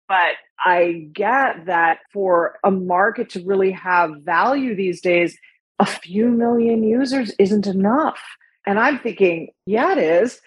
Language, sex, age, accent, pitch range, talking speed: English, female, 40-59, American, 170-220 Hz, 145 wpm